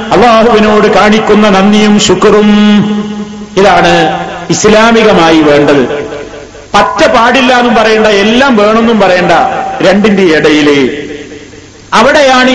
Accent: native